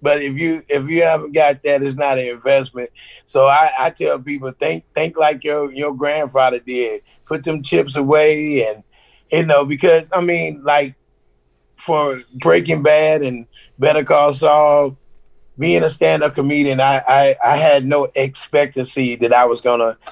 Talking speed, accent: 165 wpm, American